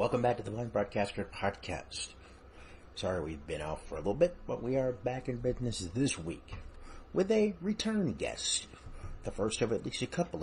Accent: American